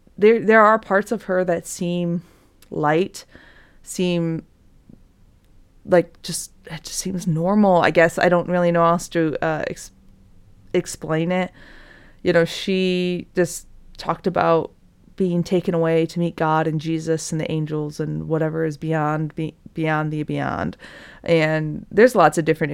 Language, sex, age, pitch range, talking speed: English, female, 20-39, 155-180 Hz, 155 wpm